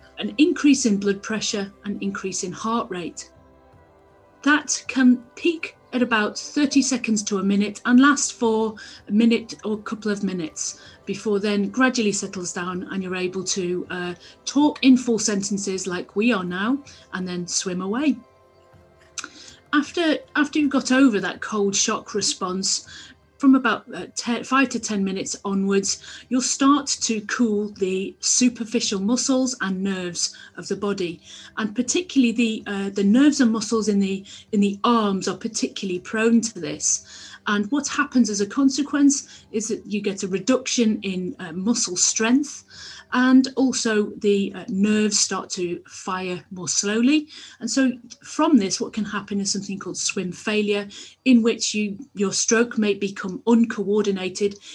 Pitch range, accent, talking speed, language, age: 195-250 Hz, British, 160 wpm, English, 40-59